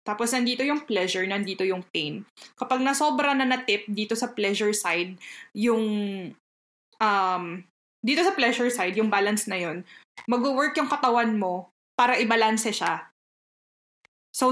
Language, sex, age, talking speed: Filipino, female, 20-39, 140 wpm